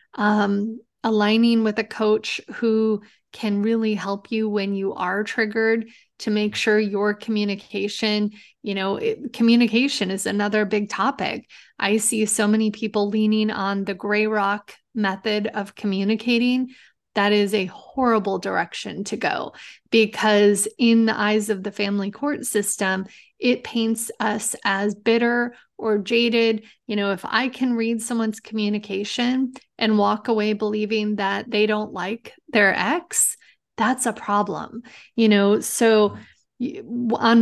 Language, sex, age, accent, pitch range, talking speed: English, female, 30-49, American, 205-230 Hz, 140 wpm